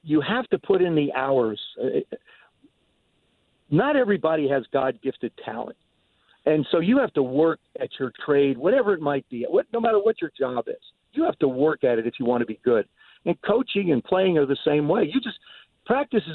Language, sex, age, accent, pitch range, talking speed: English, male, 50-69, American, 140-200 Hz, 200 wpm